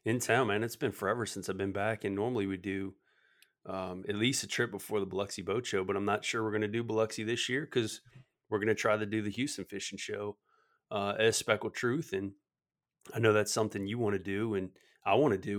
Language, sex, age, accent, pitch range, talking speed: English, male, 30-49, American, 100-110 Hz, 245 wpm